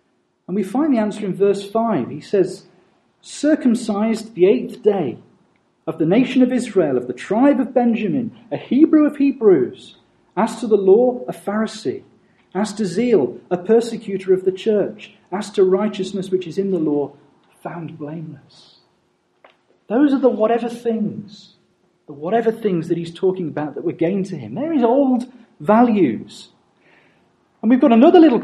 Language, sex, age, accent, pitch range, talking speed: English, male, 40-59, British, 190-245 Hz, 165 wpm